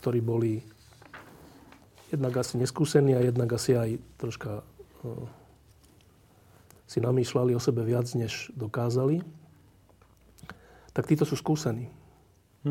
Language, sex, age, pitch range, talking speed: Slovak, male, 40-59, 115-140 Hz, 100 wpm